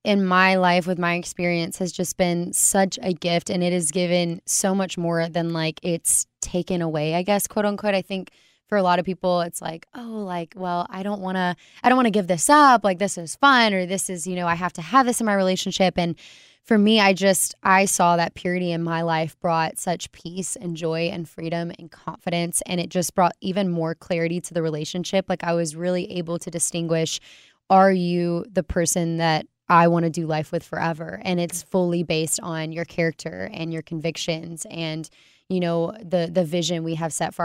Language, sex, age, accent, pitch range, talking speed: English, female, 20-39, American, 165-185 Hz, 220 wpm